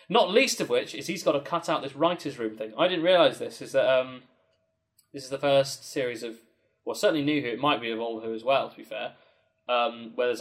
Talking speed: 260 wpm